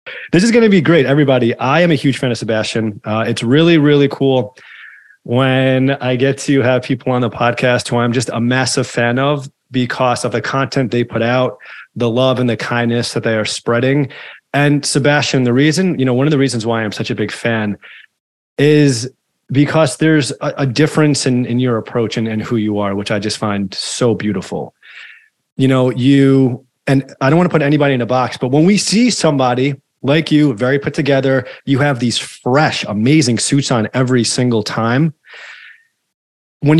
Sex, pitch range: male, 115-140 Hz